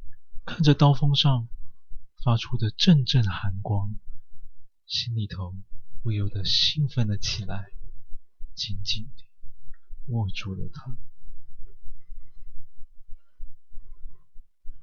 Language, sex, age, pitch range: Chinese, male, 20-39, 100-115 Hz